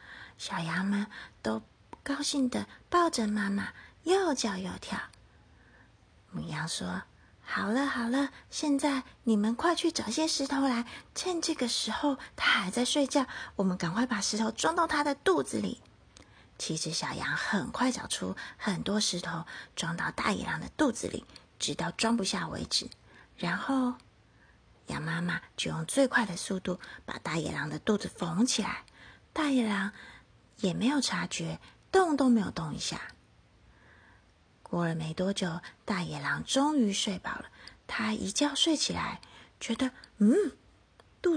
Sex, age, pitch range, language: female, 30-49, 185-275 Hz, Chinese